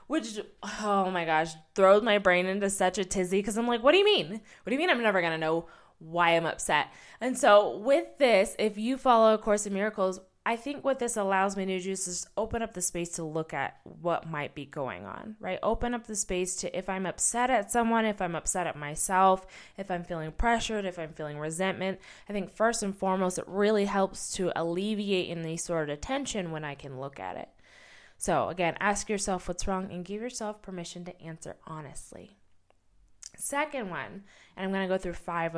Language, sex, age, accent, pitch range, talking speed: English, female, 20-39, American, 170-215 Hz, 215 wpm